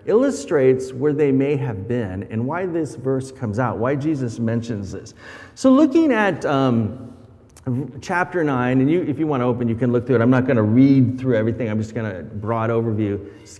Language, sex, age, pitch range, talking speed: English, male, 40-59, 115-150 Hz, 205 wpm